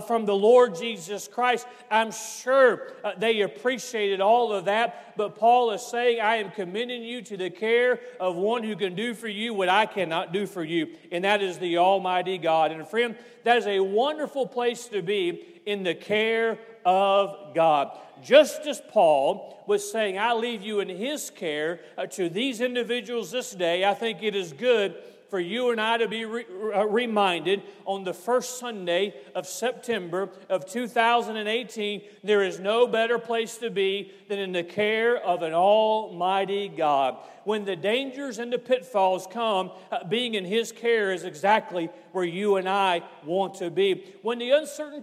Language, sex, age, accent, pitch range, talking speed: English, male, 40-59, American, 185-235 Hz, 175 wpm